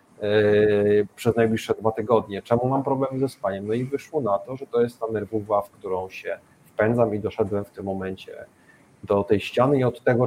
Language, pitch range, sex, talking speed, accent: Polish, 110-135 Hz, male, 200 wpm, native